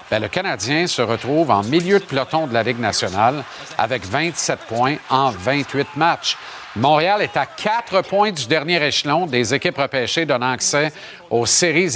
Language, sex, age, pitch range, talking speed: French, male, 50-69, 130-180 Hz, 170 wpm